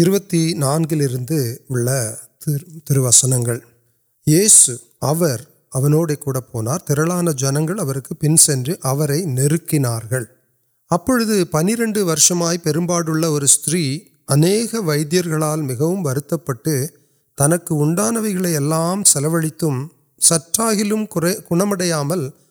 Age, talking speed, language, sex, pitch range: 30-49, 65 wpm, Urdu, male, 140-175 Hz